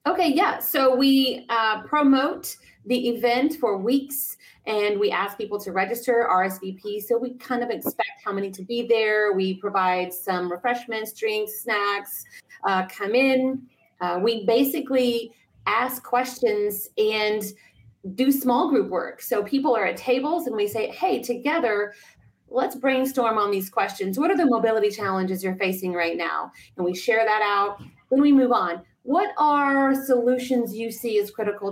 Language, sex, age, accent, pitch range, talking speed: English, female, 30-49, American, 205-260 Hz, 165 wpm